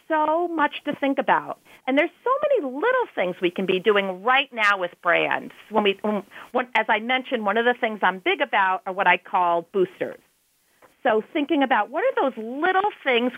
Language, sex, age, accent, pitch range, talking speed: English, female, 40-59, American, 215-290 Hz, 200 wpm